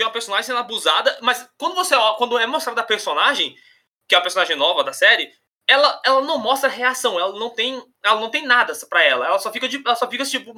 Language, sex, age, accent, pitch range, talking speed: Portuguese, male, 20-39, Brazilian, 225-305 Hz, 235 wpm